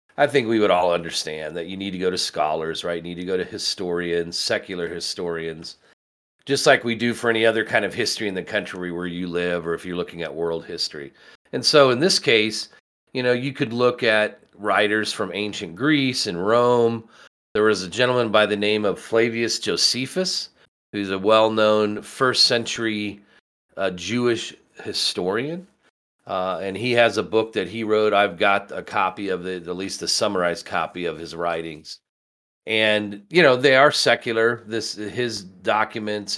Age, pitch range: 40-59, 95-115 Hz